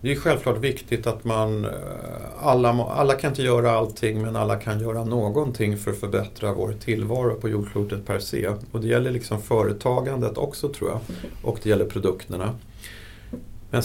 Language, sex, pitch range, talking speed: Swedish, male, 105-120 Hz, 170 wpm